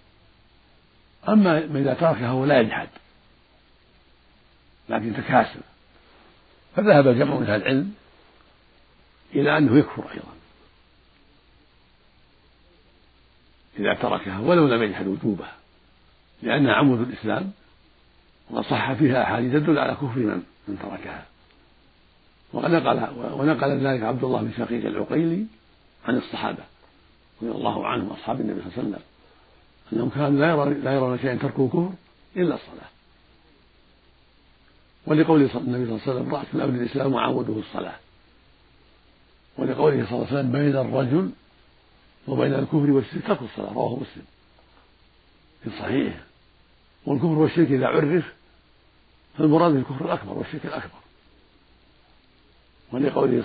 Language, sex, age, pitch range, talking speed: Arabic, male, 60-79, 95-145 Hz, 115 wpm